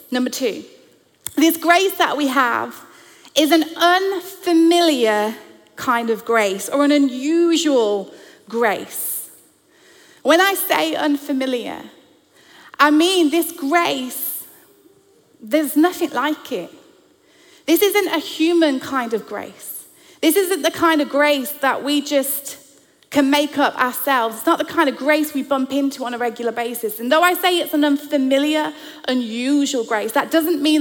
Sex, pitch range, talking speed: female, 265-335 Hz, 140 wpm